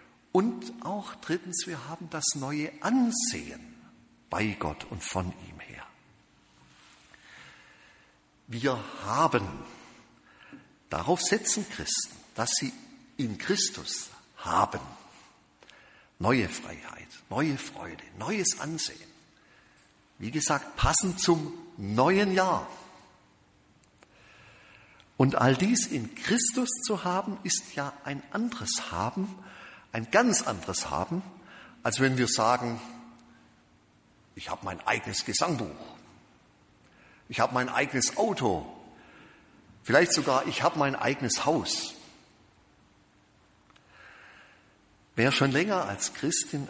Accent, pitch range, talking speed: German, 120-200 Hz, 100 wpm